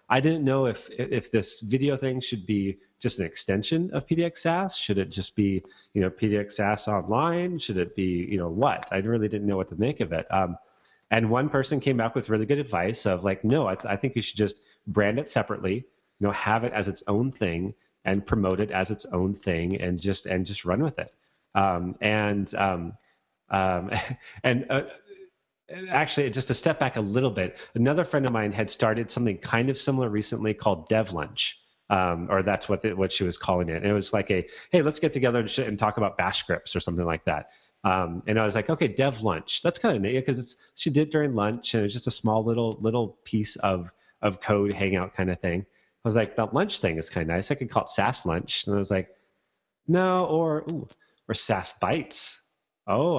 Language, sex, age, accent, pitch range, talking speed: English, male, 30-49, American, 95-130 Hz, 230 wpm